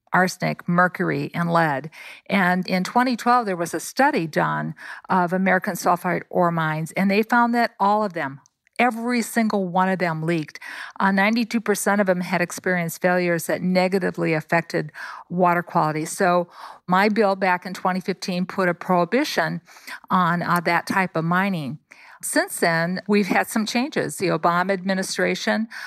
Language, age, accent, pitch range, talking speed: English, 50-69, American, 170-200 Hz, 155 wpm